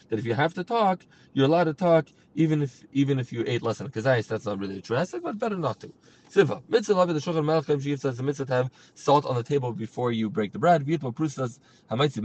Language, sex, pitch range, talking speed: English, male, 130-165 Hz, 220 wpm